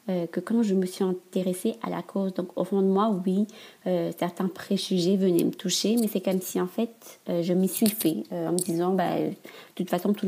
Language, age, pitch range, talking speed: French, 30-49, 175-195 Hz, 255 wpm